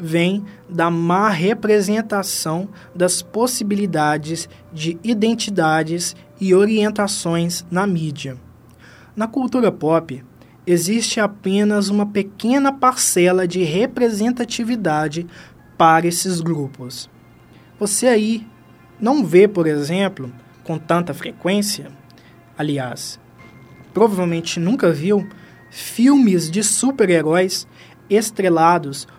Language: Portuguese